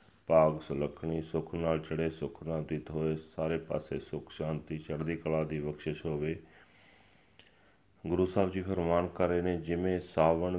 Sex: male